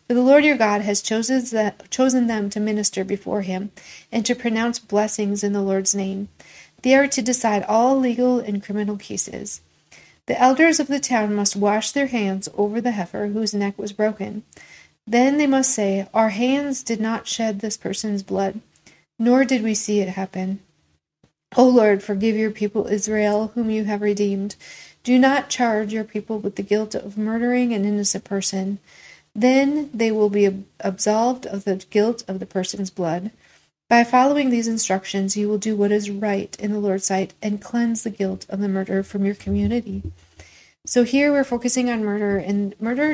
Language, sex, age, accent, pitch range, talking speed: English, female, 40-59, American, 200-230 Hz, 180 wpm